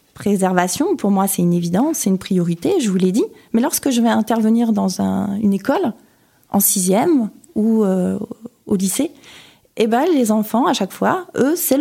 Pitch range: 185-225 Hz